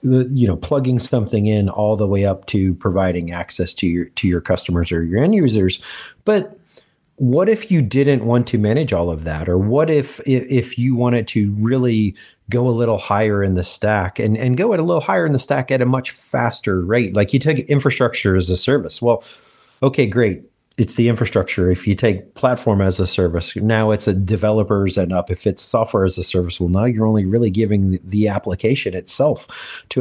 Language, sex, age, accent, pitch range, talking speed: English, male, 30-49, American, 100-130 Hz, 210 wpm